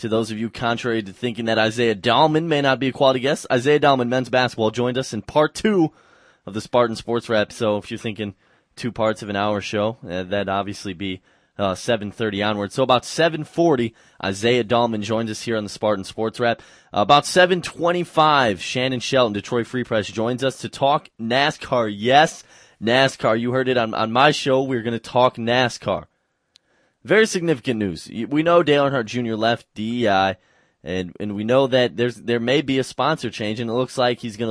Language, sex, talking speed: English, male, 195 wpm